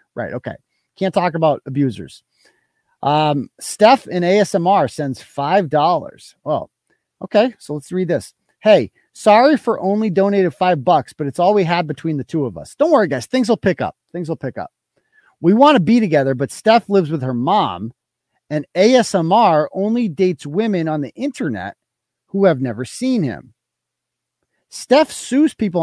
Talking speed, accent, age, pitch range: 170 wpm, American, 40-59, 150-215 Hz